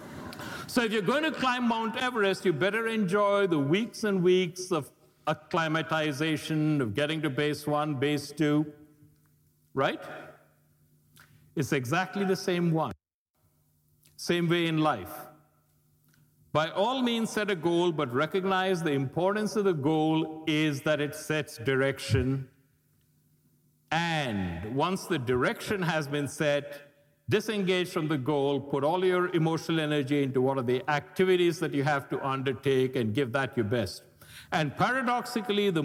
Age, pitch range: 60-79, 145-185 Hz